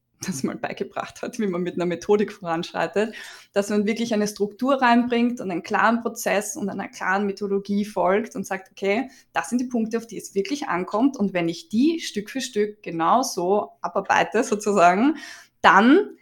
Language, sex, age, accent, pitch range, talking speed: German, female, 20-39, German, 190-225 Hz, 180 wpm